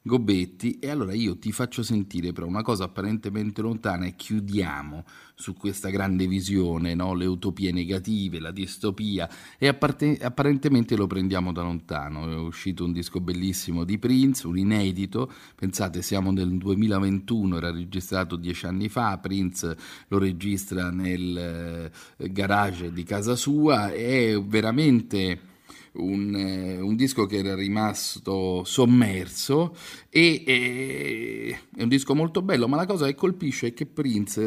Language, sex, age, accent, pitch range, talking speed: Italian, male, 40-59, native, 90-120 Hz, 140 wpm